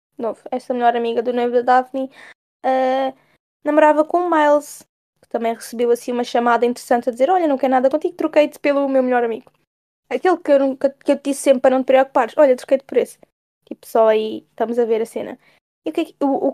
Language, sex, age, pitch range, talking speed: Portuguese, female, 10-29, 235-285 Hz, 230 wpm